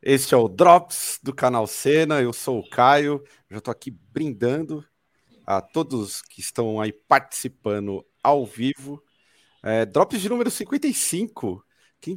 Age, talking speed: 40-59, 145 wpm